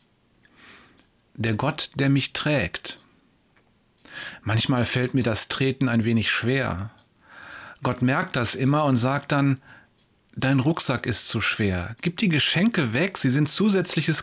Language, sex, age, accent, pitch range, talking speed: German, male, 40-59, German, 120-160 Hz, 135 wpm